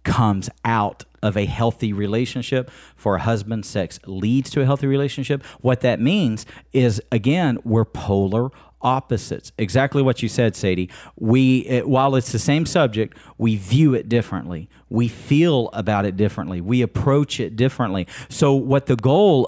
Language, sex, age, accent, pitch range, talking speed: English, male, 40-59, American, 105-140 Hz, 160 wpm